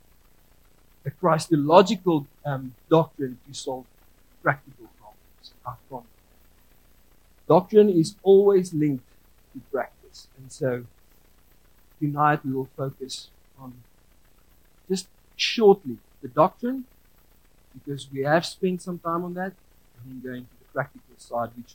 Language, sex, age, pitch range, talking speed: English, male, 50-69, 135-215 Hz, 110 wpm